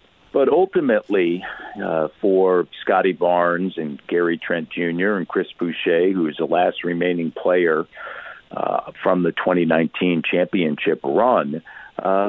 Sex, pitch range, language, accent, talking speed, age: male, 85-100 Hz, English, American, 125 wpm, 50-69